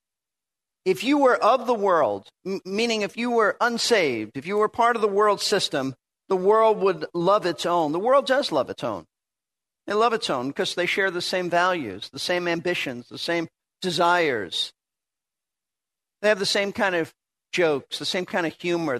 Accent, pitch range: American, 175-230 Hz